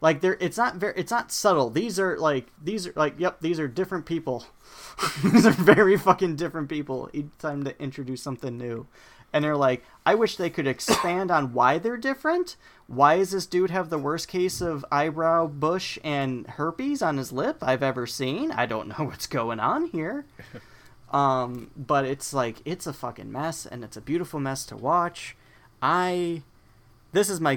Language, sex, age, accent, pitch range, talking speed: English, male, 30-49, American, 120-165 Hz, 190 wpm